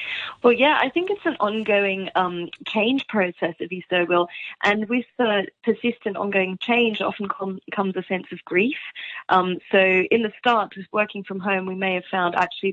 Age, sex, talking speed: 30-49, female, 190 wpm